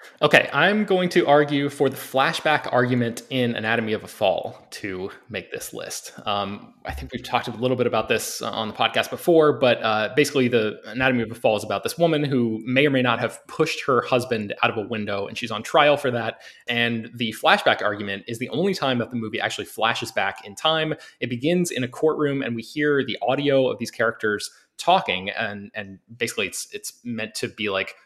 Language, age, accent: English, 20-39, American